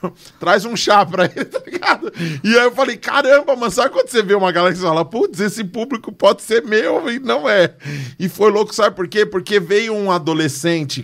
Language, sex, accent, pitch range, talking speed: Portuguese, male, Brazilian, 180-220 Hz, 215 wpm